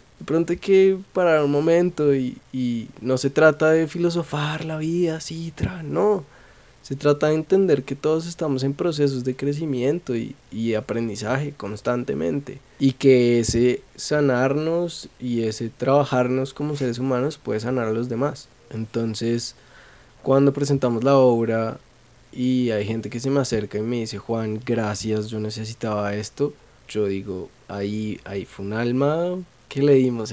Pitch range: 115-145 Hz